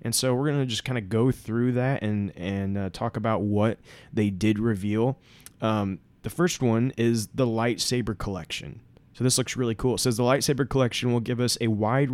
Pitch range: 105-125 Hz